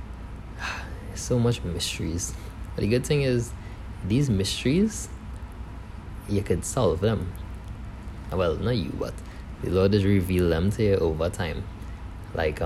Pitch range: 85-105 Hz